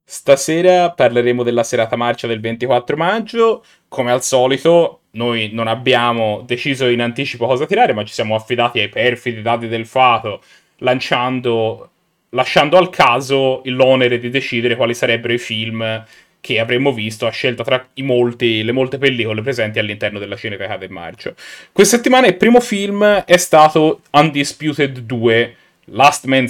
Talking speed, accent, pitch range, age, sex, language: 150 wpm, native, 120-165 Hz, 30-49, male, Italian